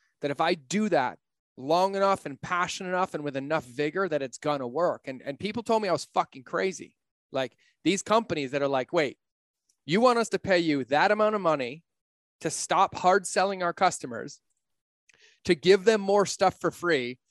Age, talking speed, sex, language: 30-49, 200 wpm, male, English